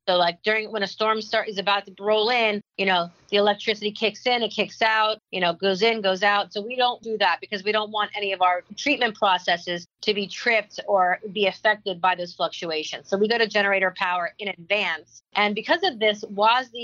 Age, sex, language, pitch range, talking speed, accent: 40-59, female, English, 190-225 Hz, 225 wpm, American